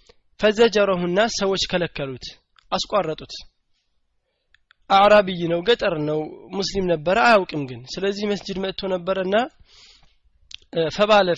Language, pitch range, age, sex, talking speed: Amharic, 155-200 Hz, 20-39, male, 100 wpm